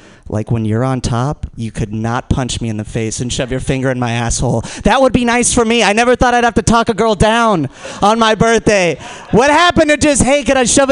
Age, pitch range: 30-49, 175-245 Hz